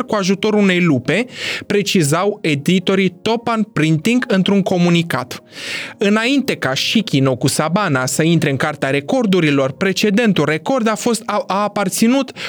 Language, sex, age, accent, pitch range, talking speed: Romanian, male, 20-39, native, 160-230 Hz, 120 wpm